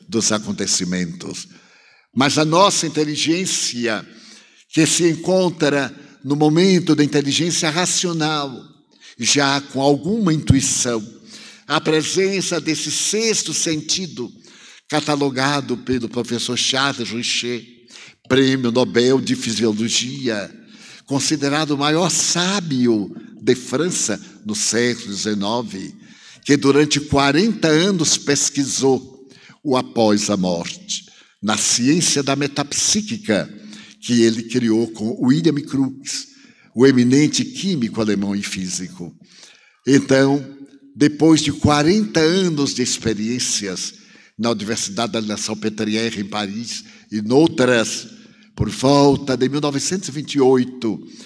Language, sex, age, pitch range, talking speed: Portuguese, male, 60-79, 115-155 Hz, 100 wpm